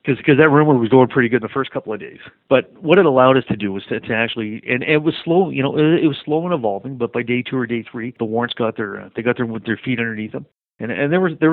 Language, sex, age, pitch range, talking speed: English, male, 40-59, 110-135 Hz, 325 wpm